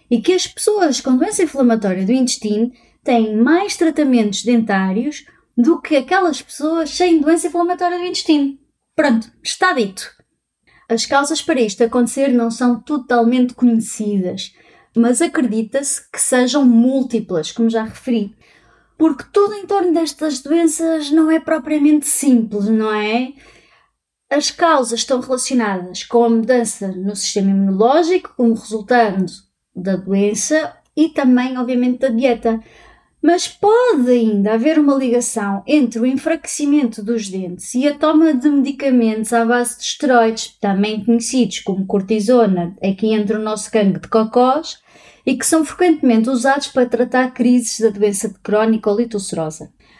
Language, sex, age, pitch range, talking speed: Portuguese, female, 20-39, 220-290 Hz, 140 wpm